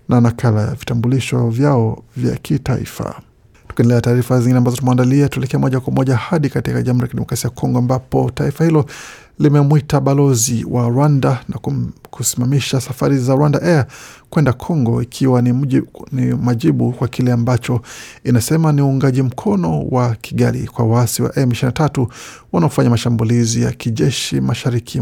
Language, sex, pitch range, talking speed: Swahili, male, 120-140 Hz, 140 wpm